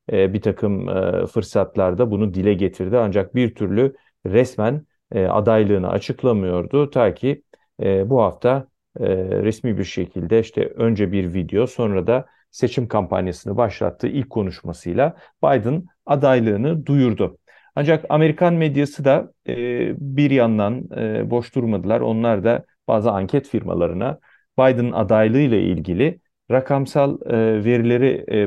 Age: 40-59